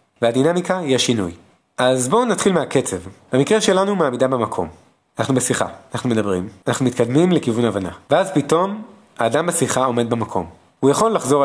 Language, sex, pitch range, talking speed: Hebrew, male, 100-165 Hz, 145 wpm